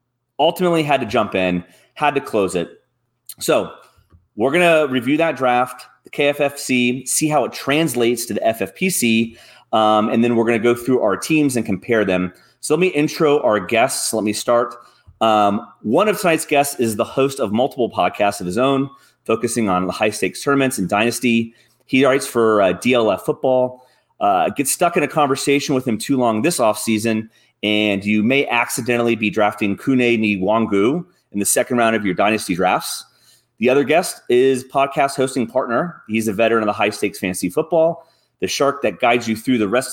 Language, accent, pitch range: English, American, 105-135 Hz